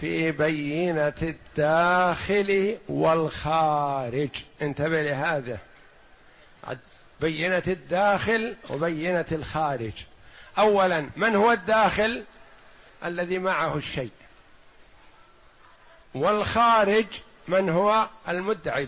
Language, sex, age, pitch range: Arabic, male, 50-69, 165-210 Hz